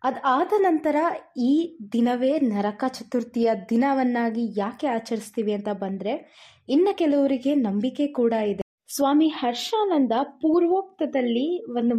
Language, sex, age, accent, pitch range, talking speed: Kannada, female, 20-39, native, 220-305 Hz, 100 wpm